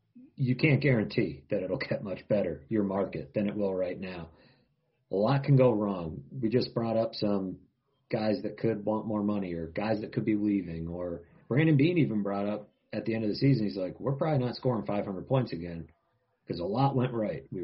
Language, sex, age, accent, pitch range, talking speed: English, male, 40-59, American, 95-125 Hz, 220 wpm